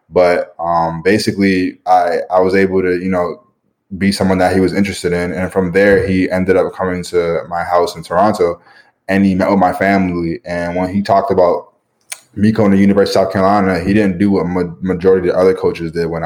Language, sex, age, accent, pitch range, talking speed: English, male, 20-39, American, 90-100 Hz, 220 wpm